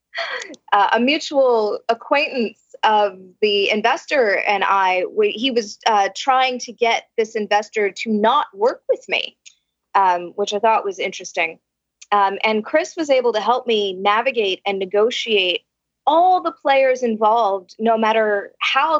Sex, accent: female, American